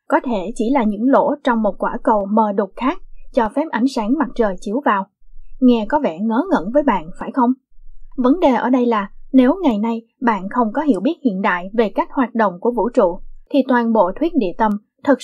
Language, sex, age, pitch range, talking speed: Vietnamese, female, 20-39, 220-275 Hz, 230 wpm